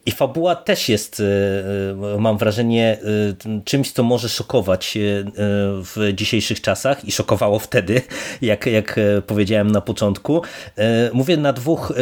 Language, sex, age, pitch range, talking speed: Polish, male, 30-49, 105-120 Hz, 120 wpm